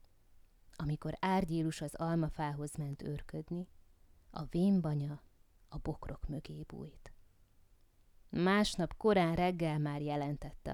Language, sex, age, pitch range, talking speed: Hungarian, female, 20-39, 145-180 Hz, 95 wpm